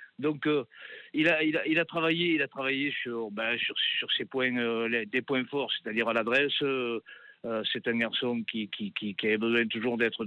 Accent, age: French, 50-69